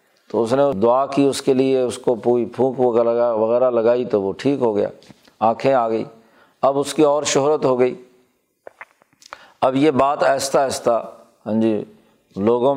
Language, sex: Urdu, male